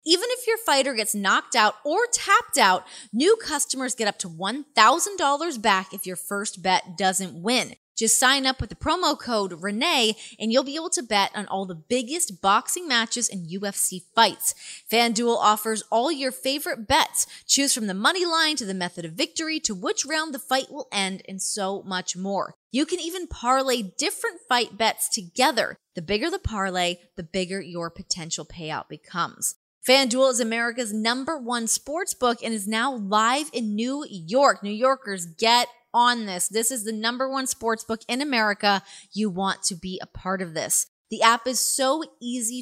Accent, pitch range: American, 195-270 Hz